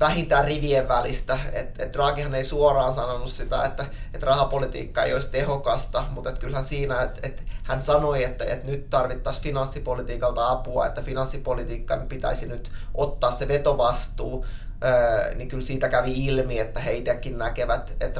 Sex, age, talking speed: male, 20-39, 155 wpm